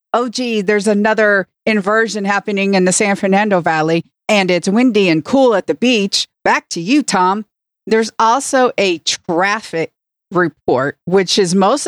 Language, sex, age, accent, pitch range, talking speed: English, female, 50-69, American, 175-215 Hz, 155 wpm